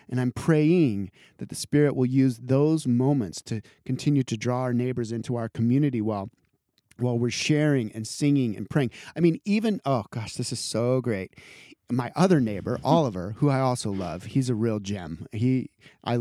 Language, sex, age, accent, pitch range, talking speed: English, male, 30-49, American, 115-145 Hz, 180 wpm